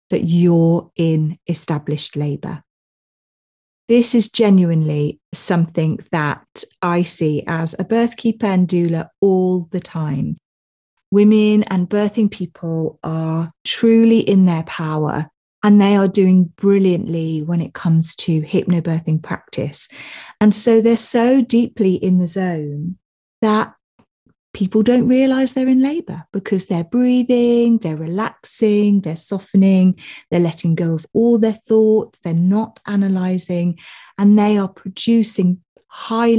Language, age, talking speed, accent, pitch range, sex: English, 30-49, 125 wpm, British, 170-215 Hz, female